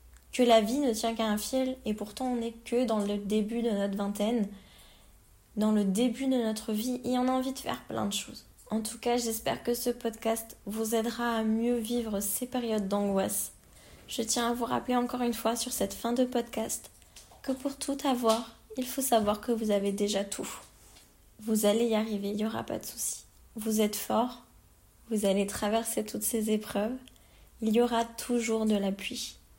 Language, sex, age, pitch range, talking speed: French, female, 20-39, 205-240 Hz, 200 wpm